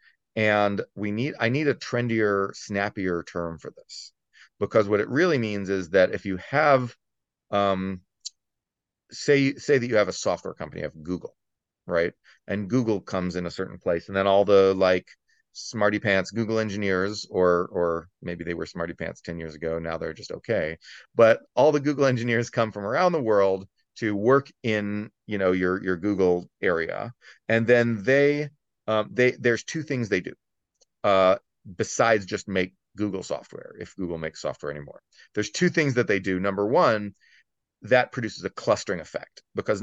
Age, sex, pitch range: 30-49, male, 90-115 Hz